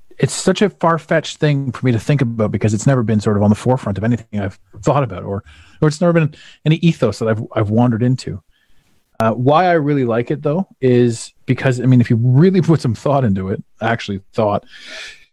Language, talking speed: English, 225 wpm